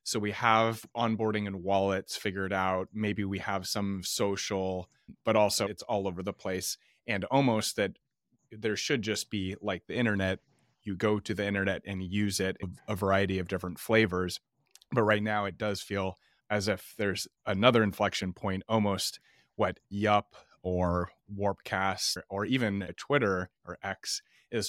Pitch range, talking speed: 95-105 Hz, 160 wpm